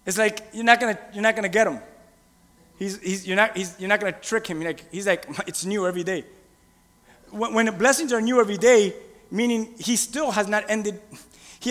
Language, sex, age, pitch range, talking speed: English, male, 30-49, 205-260 Hz, 210 wpm